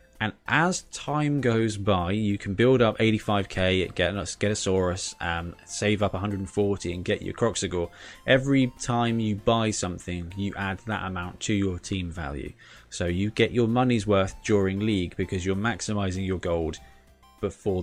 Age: 20-39